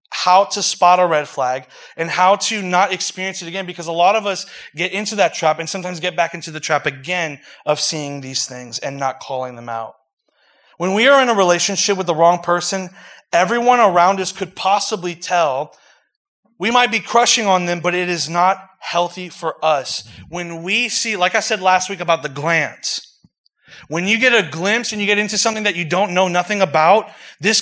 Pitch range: 160-200 Hz